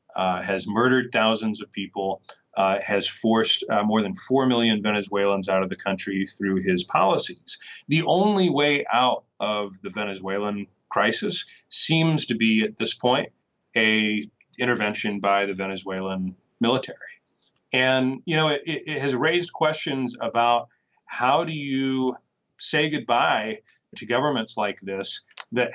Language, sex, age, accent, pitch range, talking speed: English, male, 30-49, American, 105-135 Hz, 140 wpm